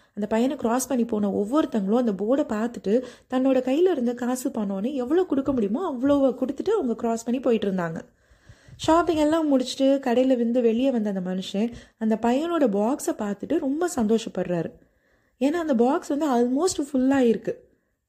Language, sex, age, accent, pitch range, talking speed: Tamil, female, 20-39, native, 210-275 Hz, 145 wpm